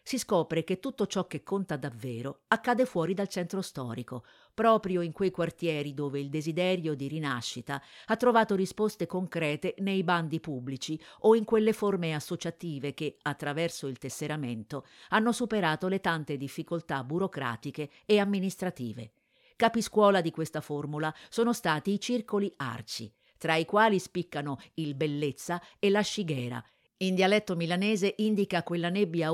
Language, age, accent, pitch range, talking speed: Italian, 50-69, native, 145-200 Hz, 145 wpm